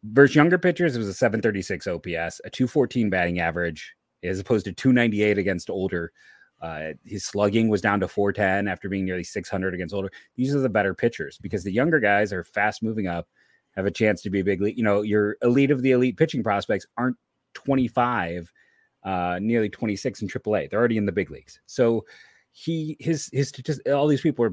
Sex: male